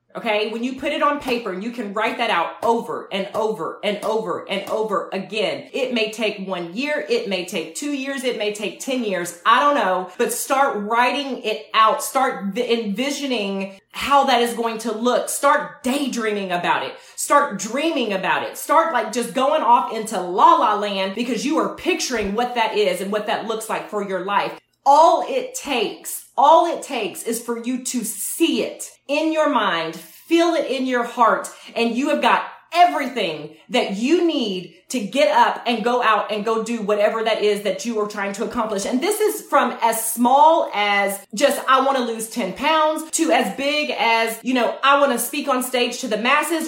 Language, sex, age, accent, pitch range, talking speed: English, female, 30-49, American, 215-280 Hz, 205 wpm